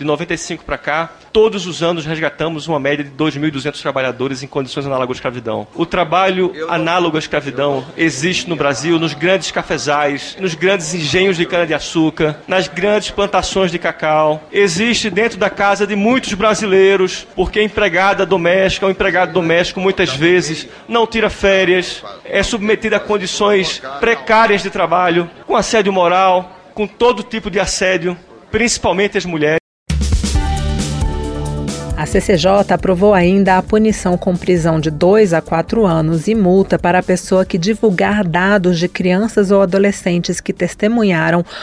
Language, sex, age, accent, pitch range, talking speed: Portuguese, male, 40-59, Brazilian, 160-200 Hz, 150 wpm